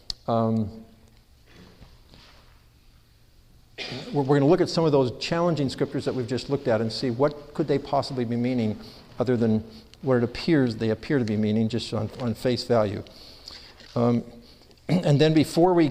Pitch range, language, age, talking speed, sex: 120-150 Hz, English, 50-69, 165 wpm, male